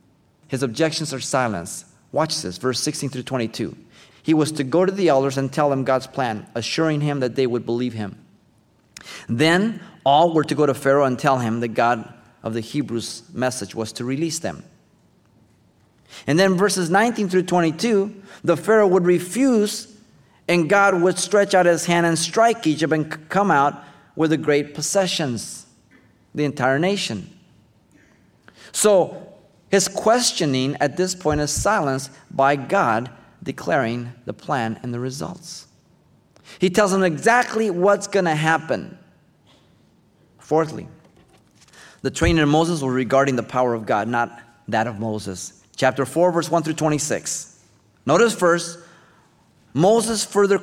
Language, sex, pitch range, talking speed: English, male, 130-185 Hz, 150 wpm